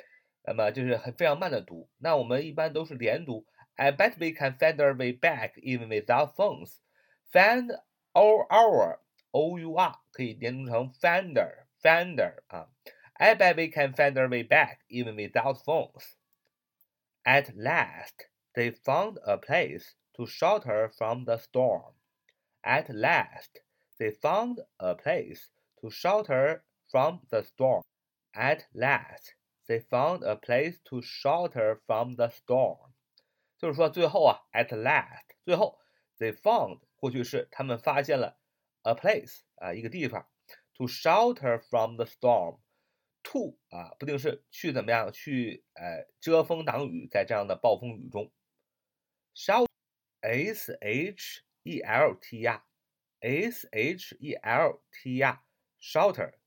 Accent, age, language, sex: native, 30-49, Chinese, male